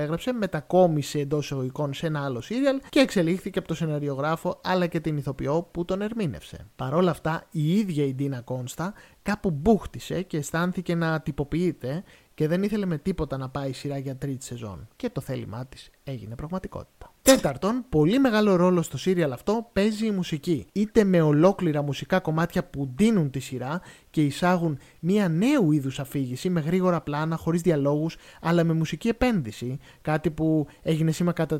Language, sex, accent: Greek, male, native